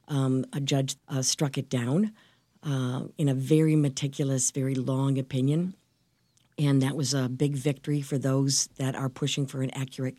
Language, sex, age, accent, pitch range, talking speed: English, female, 50-69, American, 135-160 Hz, 170 wpm